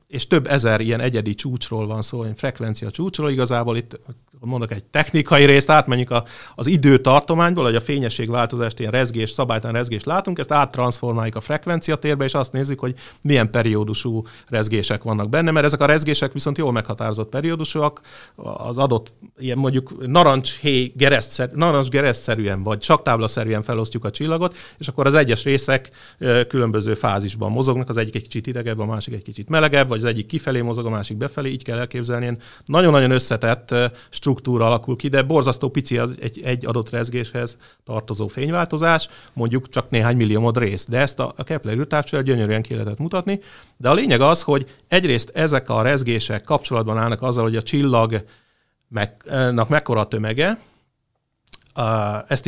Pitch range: 115-145 Hz